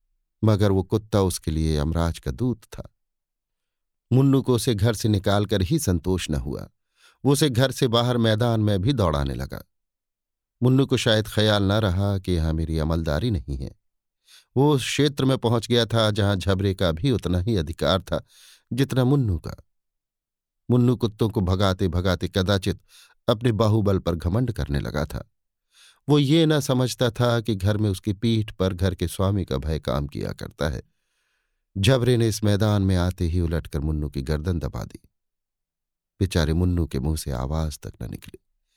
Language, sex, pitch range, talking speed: Hindi, male, 80-115 Hz, 175 wpm